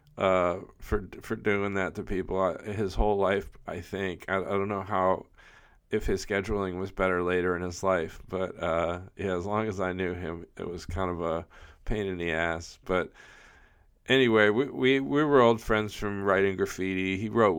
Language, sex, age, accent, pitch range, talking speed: English, male, 40-59, American, 90-110 Hz, 195 wpm